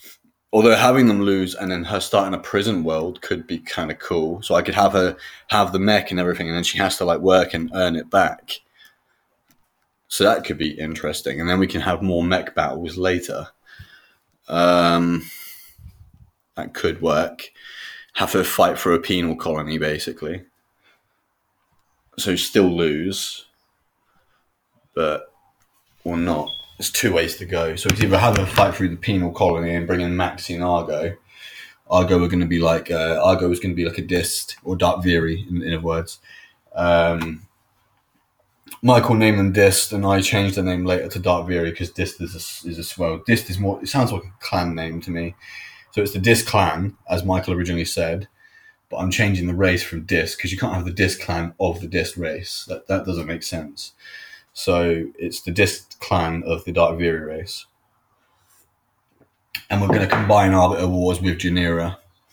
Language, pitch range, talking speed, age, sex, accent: Ukrainian, 85-100 Hz, 190 wpm, 20-39, male, British